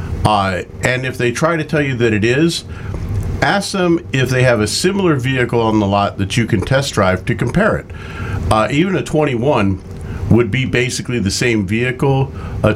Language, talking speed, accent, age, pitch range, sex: English, 200 wpm, American, 50-69, 100-120 Hz, male